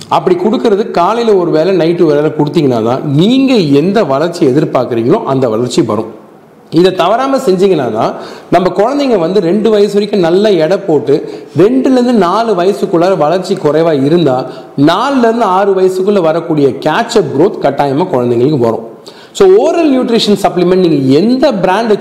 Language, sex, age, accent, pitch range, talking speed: Tamil, male, 40-59, native, 155-210 Hz, 140 wpm